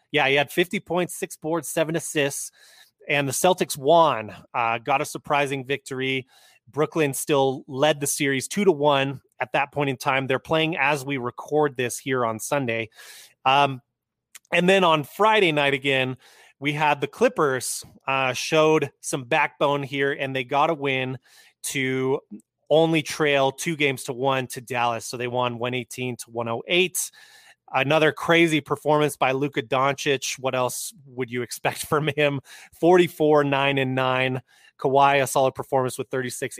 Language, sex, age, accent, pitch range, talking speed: English, male, 20-39, American, 130-155 Hz, 165 wpm